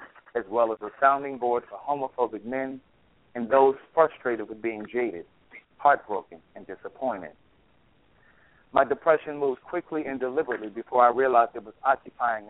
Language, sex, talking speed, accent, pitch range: English, male, 145 wpm, American, 115-145 Hz